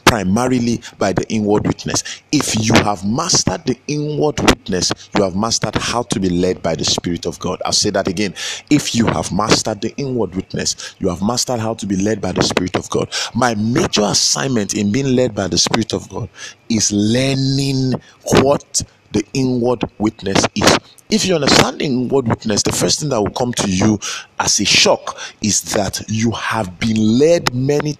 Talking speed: 190 wpm